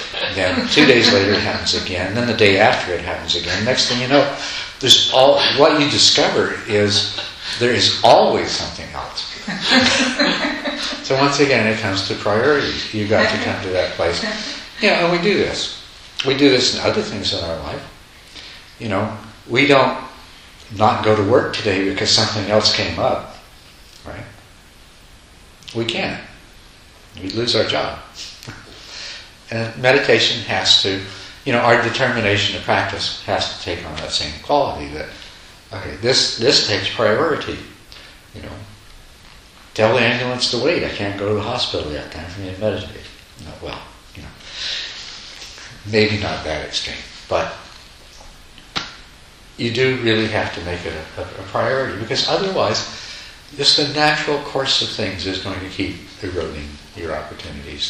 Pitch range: 95-125 Hz